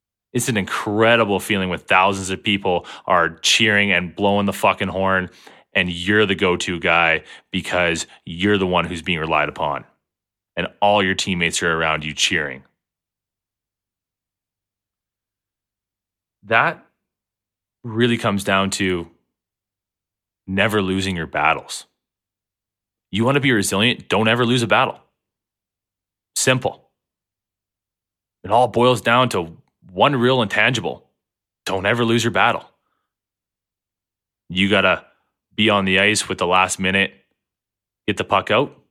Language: English